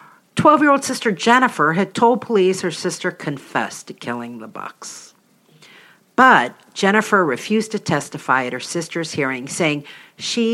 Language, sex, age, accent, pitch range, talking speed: English, female, 50-69, American, 135-195 Hz, 135 wpm